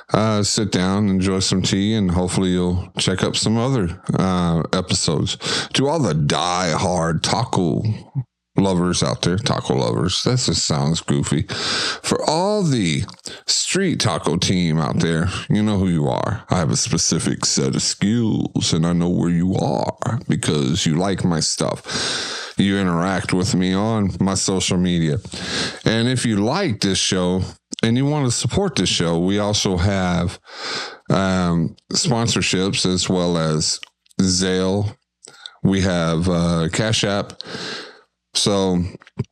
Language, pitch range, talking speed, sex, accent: English, 85-105 Hz, 150 wpm, male, American